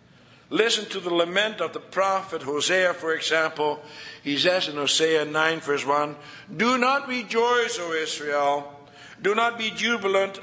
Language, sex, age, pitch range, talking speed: English, male, 60-79, 145-205 Hz, 150 wpm